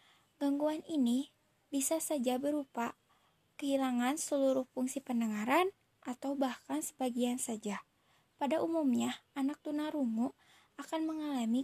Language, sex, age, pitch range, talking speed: Indonesian, female, 20-39, 250-295 Hz, 100 wpm